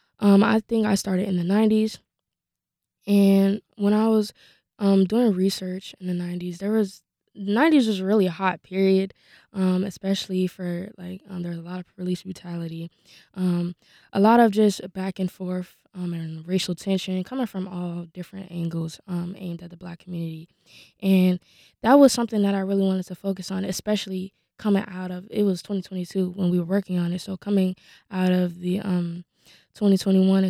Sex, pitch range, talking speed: female, 180-195 Hz, 185 wpm